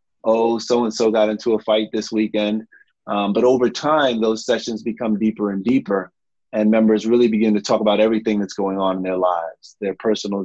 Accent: American